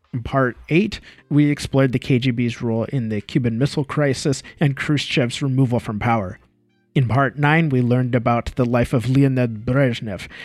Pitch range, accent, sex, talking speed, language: 120-150 Hz, American, male, 165 wpm, English